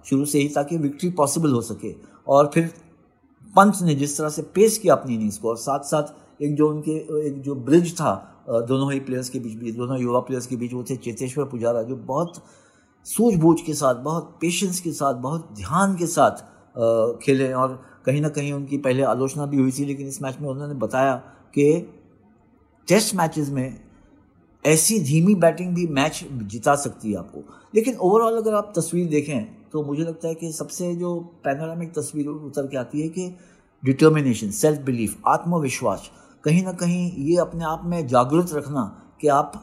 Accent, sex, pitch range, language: native, male, 130-165 Hz, Hindi